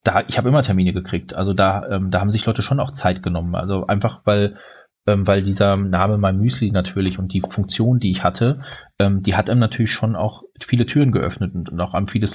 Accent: German